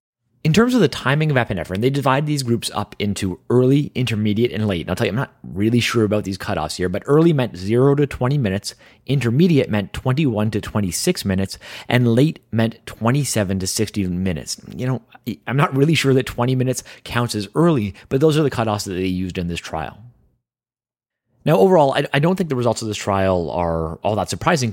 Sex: male